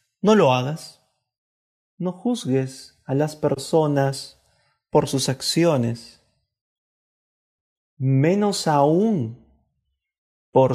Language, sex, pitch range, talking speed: Spanish, male, 120-160 Hz, 80 wpm